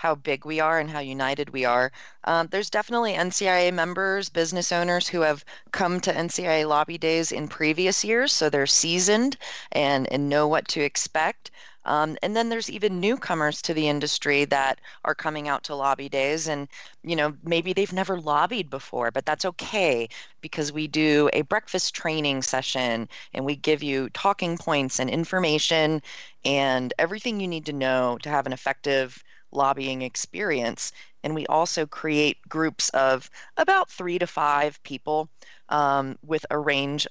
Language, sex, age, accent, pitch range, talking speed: English, female, 30-49, American, 140-170 Hz, 170 wpm